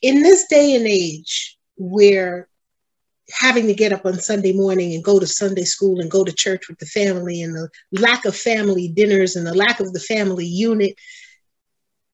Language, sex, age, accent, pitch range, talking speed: English, female, 40-59, American, 205-285 Hz, 190 wpm